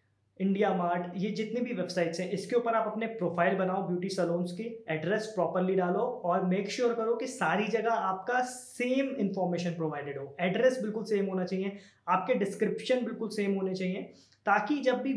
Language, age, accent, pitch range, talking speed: Hindi, 20-39, native, 175-215 Hz, 180 wpm